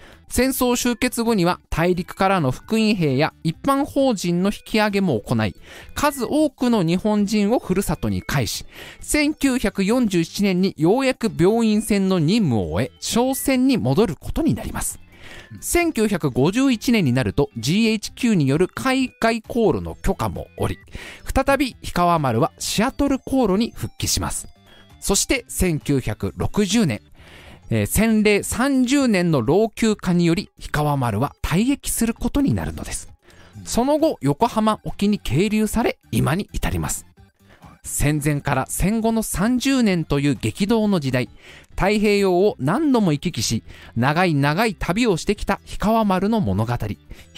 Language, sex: Japanese, male